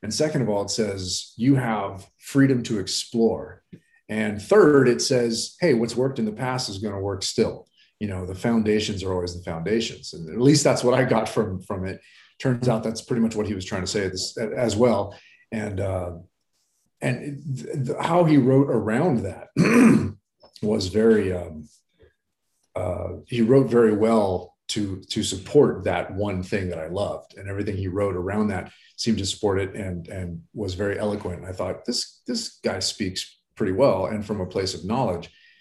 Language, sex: English, male